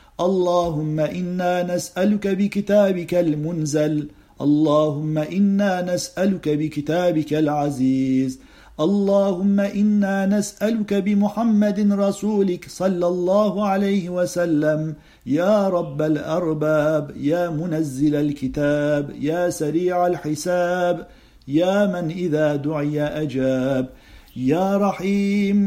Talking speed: 80 wpm